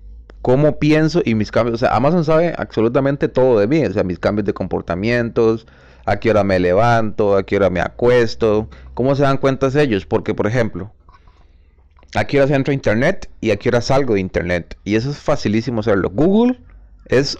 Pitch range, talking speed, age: 95-130 Hz, 195 wpm, 30-49